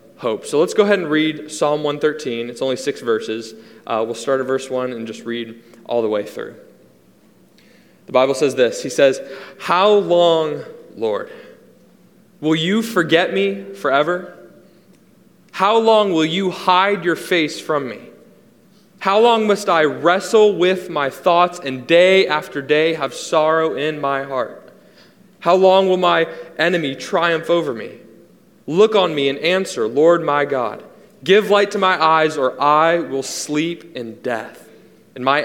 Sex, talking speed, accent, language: male, 160 wpm, American, English